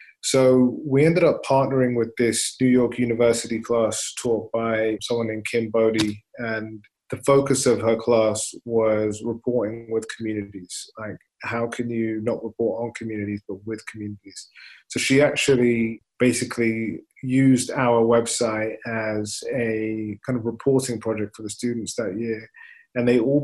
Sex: male